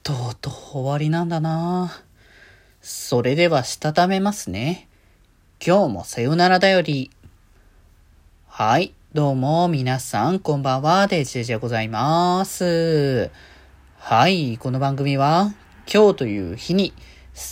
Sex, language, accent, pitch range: male, Japanese, native, 115-165 Hz